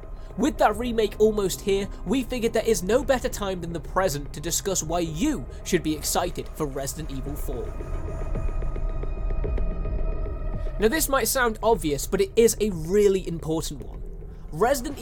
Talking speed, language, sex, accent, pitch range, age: 155 wpm, Italian, male, British, 145-210 Hz, 20-39